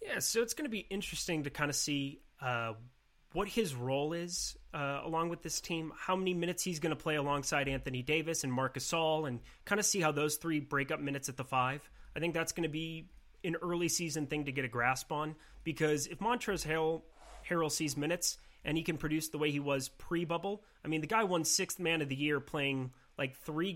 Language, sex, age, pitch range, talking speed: English, male, 30-49, 135-165 Hz, 225 wpm